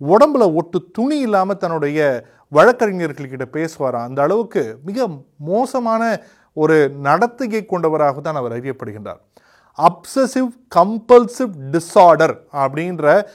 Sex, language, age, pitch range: male, Tamil, 30-49, 150-215 Hz